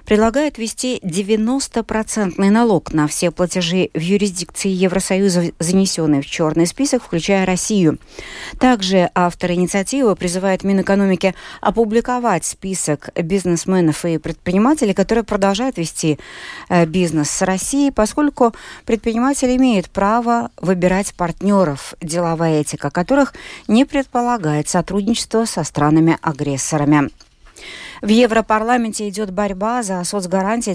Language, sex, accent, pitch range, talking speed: Russian, female, native, 170-225 Hz, 100 wpm